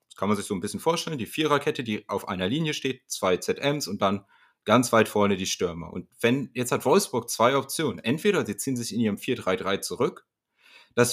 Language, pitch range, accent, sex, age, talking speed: German, 115-160 Hz, German, male, 30-49, 210 wpm